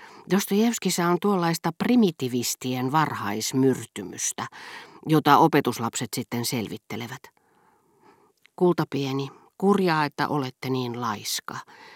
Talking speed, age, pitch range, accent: 80 wpm, 40-59, 120-170 Hz, native